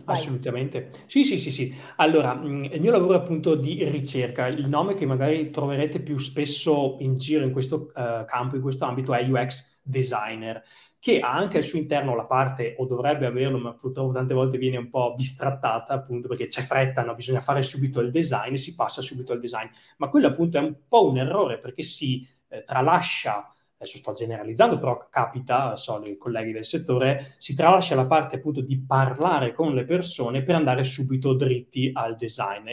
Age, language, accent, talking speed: 20-39, Italian, native, 195 wpm